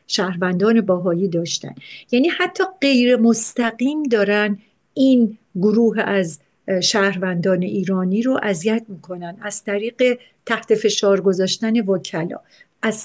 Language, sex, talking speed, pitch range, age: Persian, female, 105 wpm, 195-240 Hz, 50-69